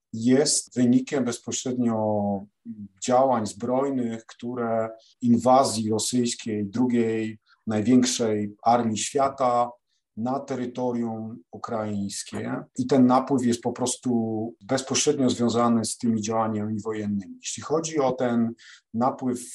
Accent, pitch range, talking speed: native, 115-130 Hz, 100 wpm